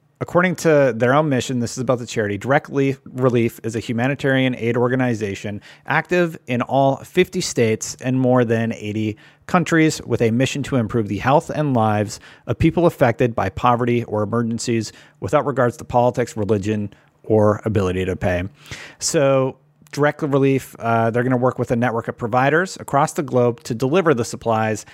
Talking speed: 170 wpm